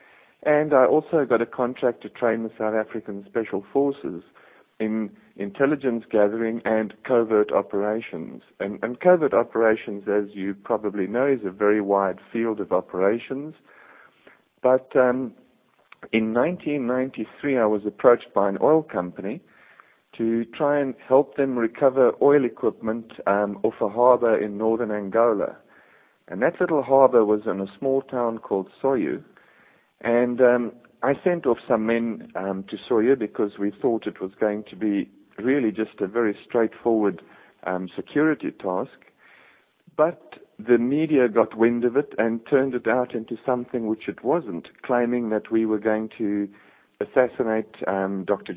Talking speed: 150 wpm